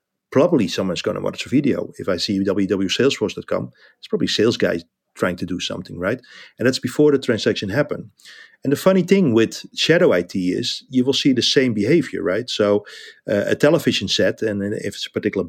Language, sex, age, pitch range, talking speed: English, male, 40-59, 95-120 Hz, 200 wpm